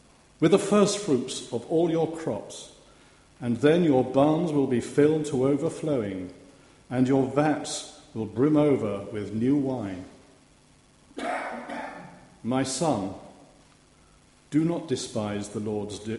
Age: 50-69